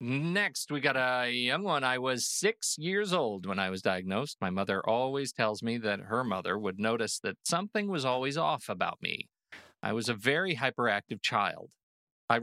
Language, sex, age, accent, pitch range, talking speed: English, male, 40-59, American, 105-135 Hz, 190 wpm